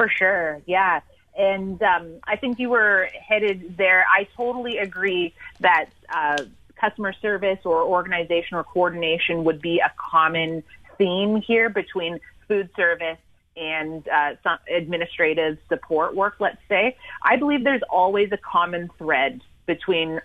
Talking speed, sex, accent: 140 wpm, female, American